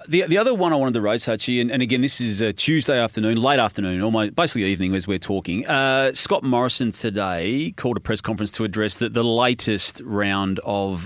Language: English